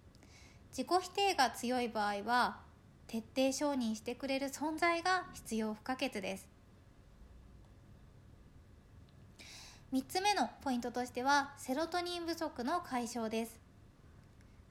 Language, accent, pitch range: Japanese, native, 225-305 Hz